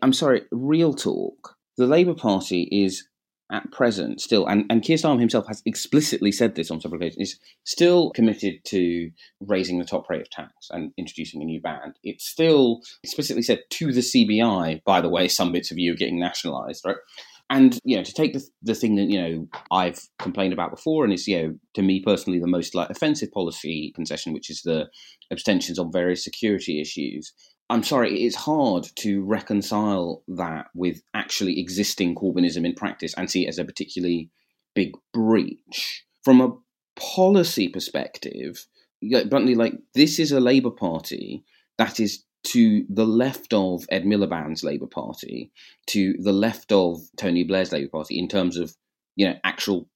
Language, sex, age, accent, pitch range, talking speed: English, male, 30-49, British, 90-125 Hz, 180 wpm